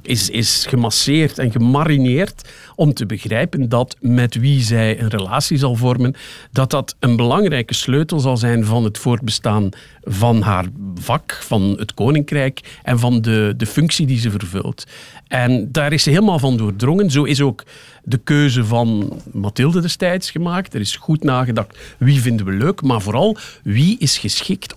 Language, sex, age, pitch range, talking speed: Dutch, male, 50-69, 115-145 Hz, 165 wpm